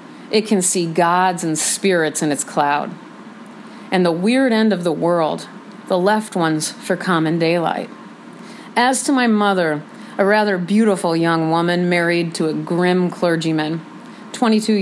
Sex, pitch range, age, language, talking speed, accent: female, 170-220 Hz, 40-59, English, 150 wpm, American